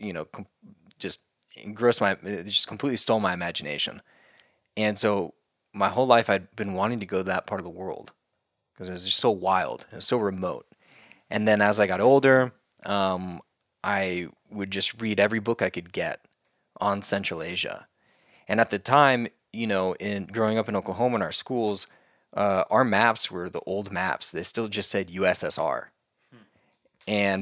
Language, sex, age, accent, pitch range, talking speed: English, male, 20-39, American, 95-110 Hz, 175 wpm